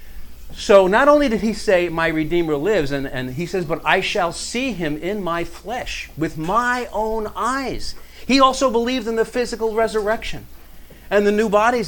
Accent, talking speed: American, 180 wpm